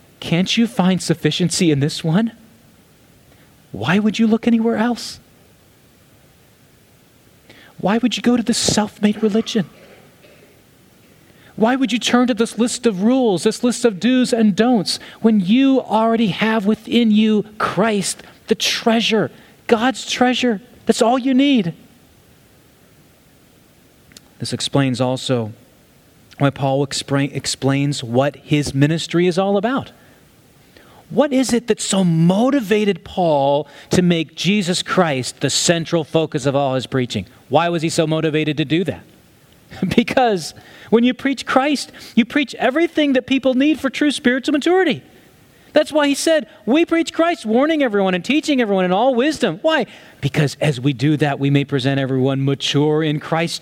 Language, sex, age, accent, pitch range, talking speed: English, male, 30-49, American, 150-245 Hz, 150 wpm